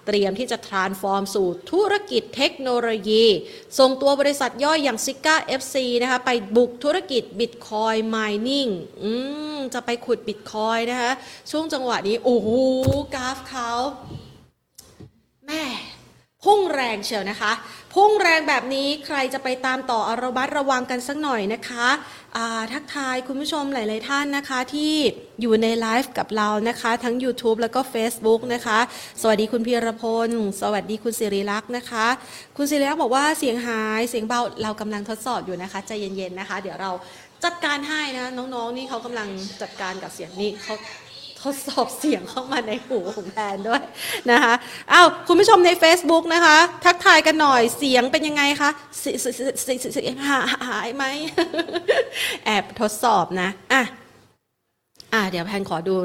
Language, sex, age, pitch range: Thai, female, 20-39, 220-280 Hz